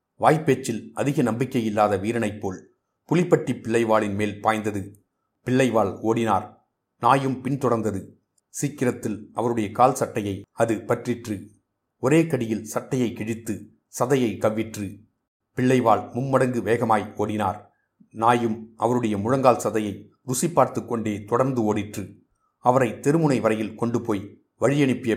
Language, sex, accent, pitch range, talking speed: Tamil, male, native, 105-125 Hz, 105 wpm